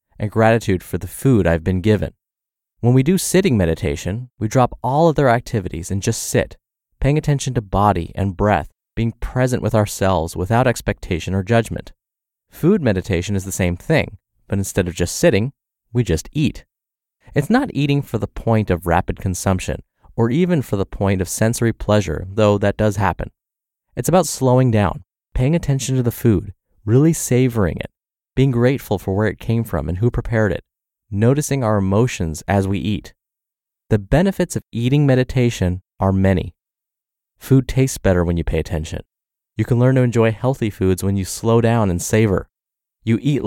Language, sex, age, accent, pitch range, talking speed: English, male, 30-49, American, 95-125 Hz, 175 wpm